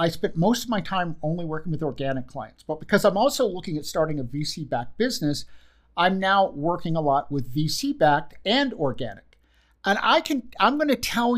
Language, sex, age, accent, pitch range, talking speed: English, male, 50-69, American, 150-205 Hz, 205 wpm